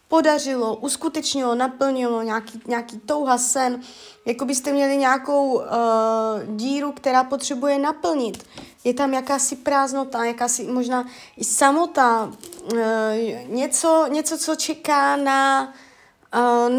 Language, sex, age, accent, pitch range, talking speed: Czech, female, 20-39, native, 230-290 Hz, 105 wpm